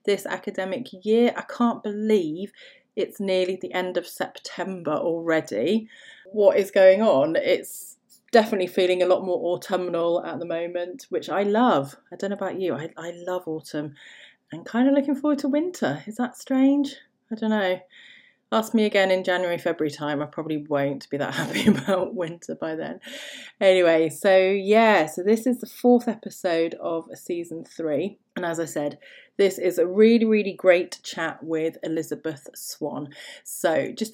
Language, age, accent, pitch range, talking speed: English, 30-49, British, 170-225 Hz, 170 wpm